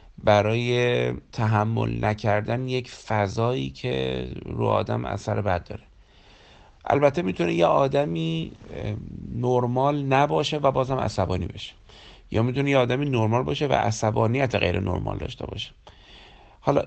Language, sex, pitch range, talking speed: Persian, male, 100-135 Hz, 120 wpm